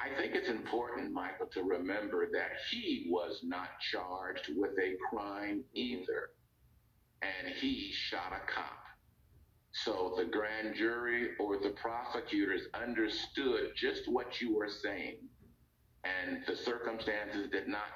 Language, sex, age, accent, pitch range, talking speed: English, male, 50-69, American, 305-430 Hz, 130 wpm